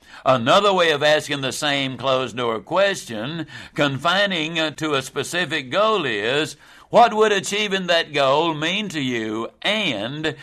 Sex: male